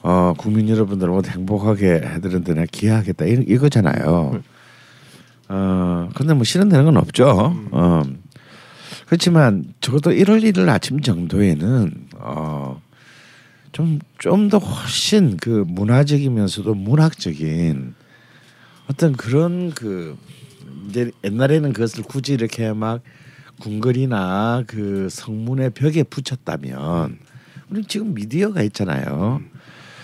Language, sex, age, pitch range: Korean, male, 50-69, 90-135 Hz